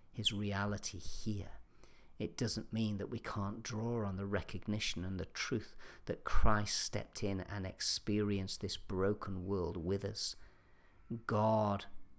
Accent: British